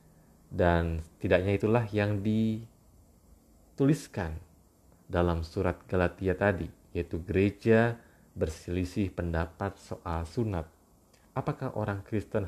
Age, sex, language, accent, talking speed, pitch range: 30-49, male, Indonesian, native, 85 wpm, 85-110 Hz